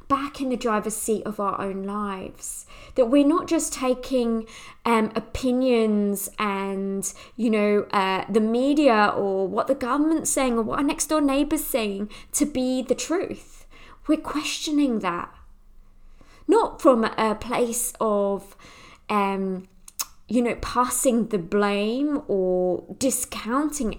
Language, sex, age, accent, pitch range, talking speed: English, female, 20-39, British, 205-285 Hz, 135 wpm